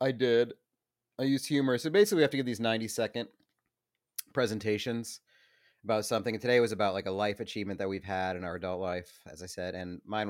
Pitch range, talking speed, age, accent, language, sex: 100-125 Hz, 220 wpm, 30-49, American, English, male